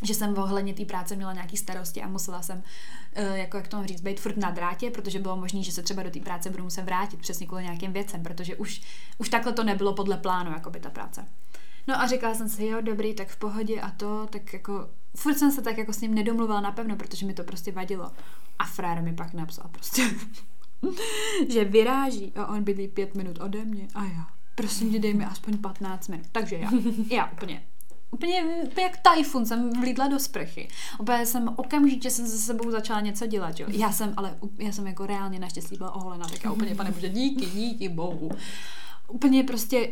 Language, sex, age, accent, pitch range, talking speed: Czech, female, 20-39, native, 190-225 Hz, 210 wpm